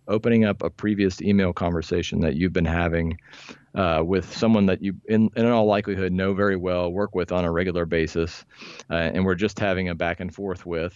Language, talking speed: English, 210 wpm